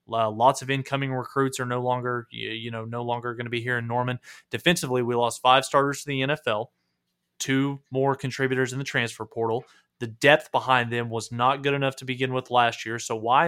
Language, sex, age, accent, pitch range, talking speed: English, male, 20-39, American, 115-145 Hz, 210 wpm